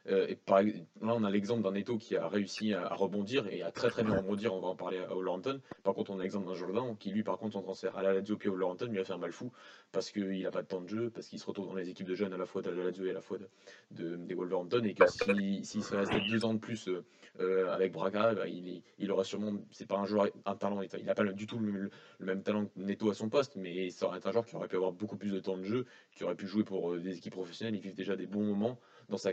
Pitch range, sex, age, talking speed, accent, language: 95-105 Hz, male, 20-39, 310 wpm, French, French